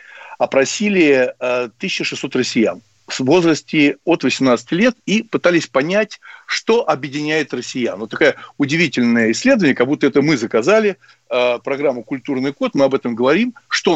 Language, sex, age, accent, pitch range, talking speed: Russian, male, 60-79, native, 125-170 Hz, 135 wpm